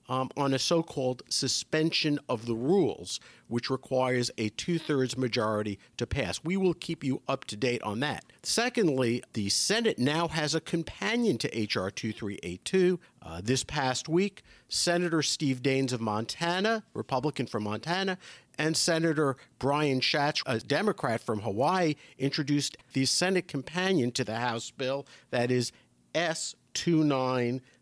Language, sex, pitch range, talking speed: English, male, 120-160 Hz, 140 wpm